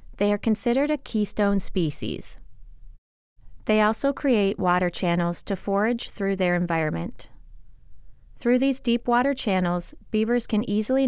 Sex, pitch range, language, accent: female, 175-225 Hz, English, American